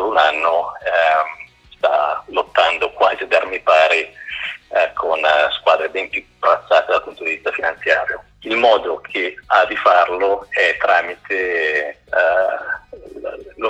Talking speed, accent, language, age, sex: 130 wpm, native, Italian, 40-59, male